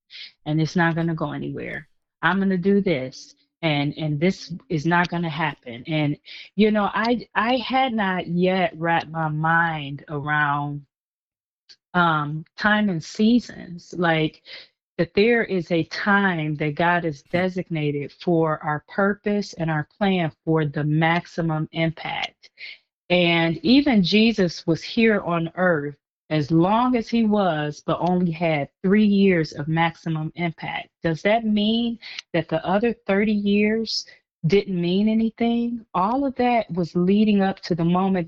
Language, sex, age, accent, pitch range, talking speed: English, female, 30-49, American, 155-195 Hz, 150 wpm